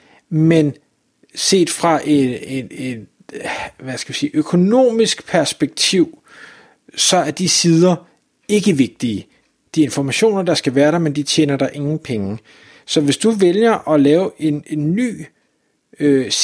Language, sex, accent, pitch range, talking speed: Danish, male, native, 145-190 Hz, 125 wpm